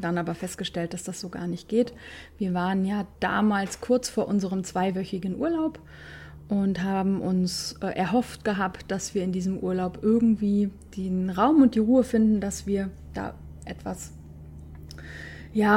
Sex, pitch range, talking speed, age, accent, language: female, 180-215 Hz, 155 wpm, 30-49, German, German